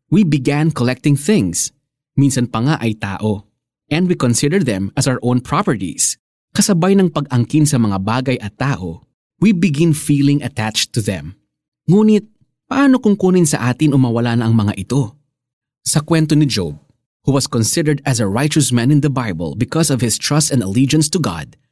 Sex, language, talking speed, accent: male, Filipino, 175 wpm, native